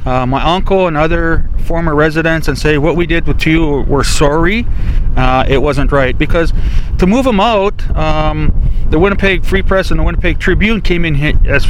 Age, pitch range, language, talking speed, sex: 40-59, 140-170 Hz, English, 190 wpm, male